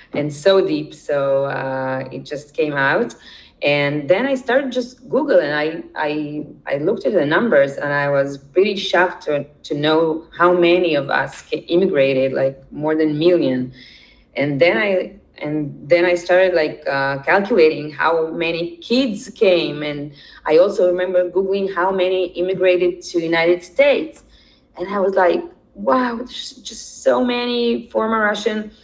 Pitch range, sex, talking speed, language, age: 150-205 Hz, female, 160 wpm, English, 20-39